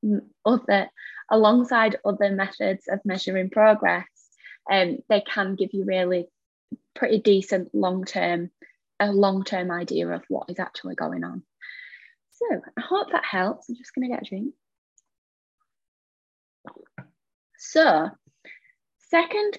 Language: English